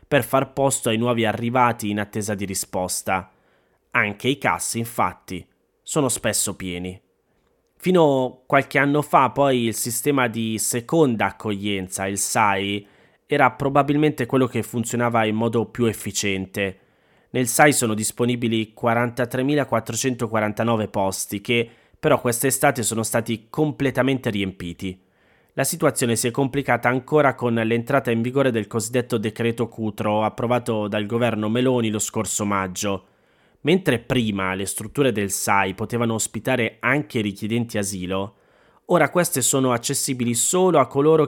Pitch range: 105-130 Hz